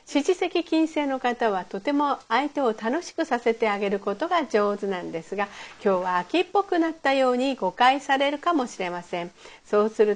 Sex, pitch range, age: female, 210-310 Hz, 50-69